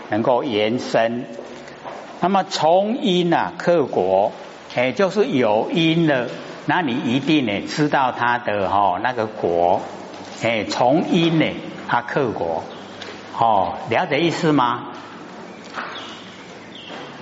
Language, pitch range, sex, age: Chinese, 125-170 Hz, male, 60-79